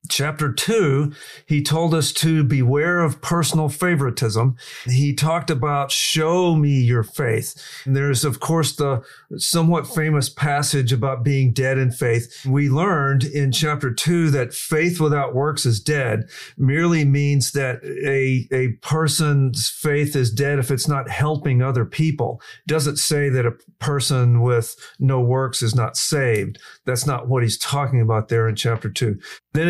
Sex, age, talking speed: male, 50-69, 160 wpm